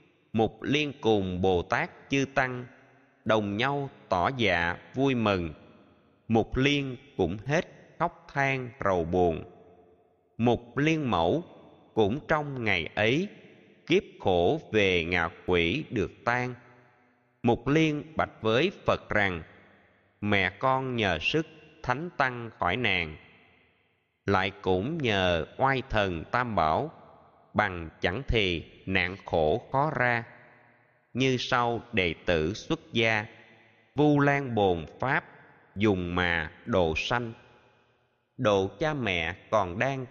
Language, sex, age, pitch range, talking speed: Vietnamese, male, 20-39, 95-130 Hz, 125 wpm